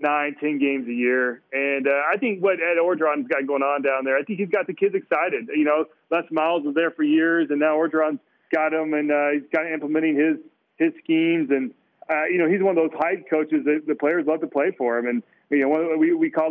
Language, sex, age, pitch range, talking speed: English, male, 40-59, 145-190 Hz, 250 wpm